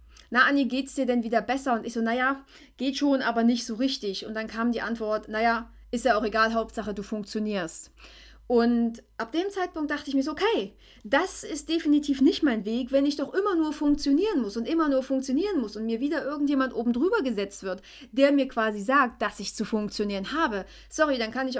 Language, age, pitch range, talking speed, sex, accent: German, 30-49, 220-275 Hz, 215 wpm, female, German